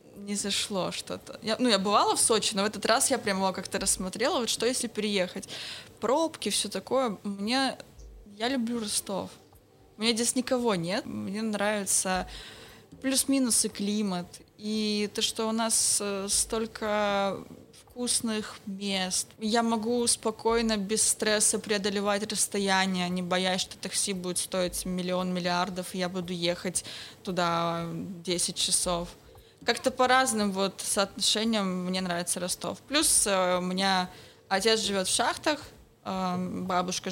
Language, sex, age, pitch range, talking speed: Russian, female, 20-39, 190-225 Hz, 135 wpm